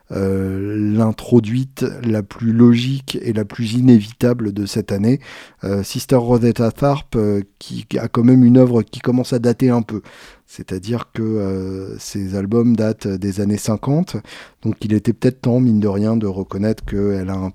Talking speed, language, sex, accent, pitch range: 180 wpm, French, male, French, 100-120 Hz